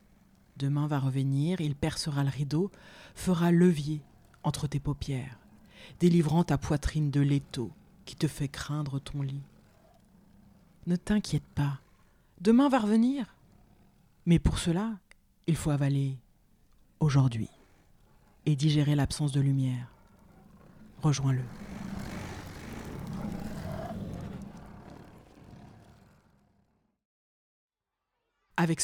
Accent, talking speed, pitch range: French, 90 wpm, 130-160 Hz